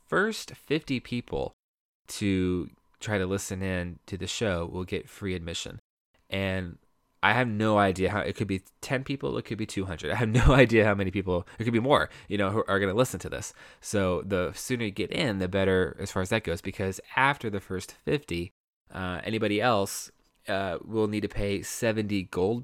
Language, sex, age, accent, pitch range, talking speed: English, male, 20-39, American, 90-115 Hz, 205 wpm